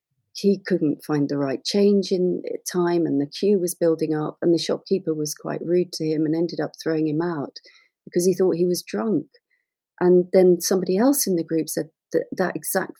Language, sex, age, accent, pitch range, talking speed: English, female, 40-59, British, 160-195 Hz, 210 wpm